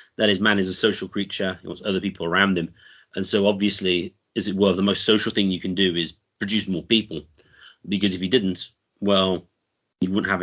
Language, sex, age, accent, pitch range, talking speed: English, male, 30-49, British, 90-105 Hz, 220 wpm